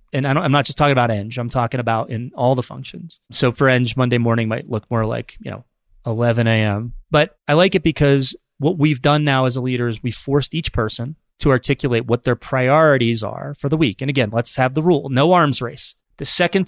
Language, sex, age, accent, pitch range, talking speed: English, male, 30-49, American, 115-150 Hz, 240 wpm